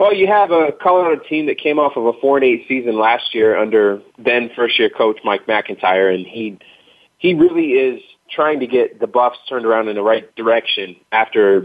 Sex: male